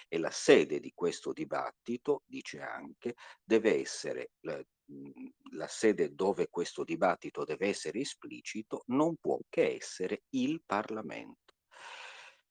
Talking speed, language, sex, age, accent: 120 wpm, Italian, male, 50-69, native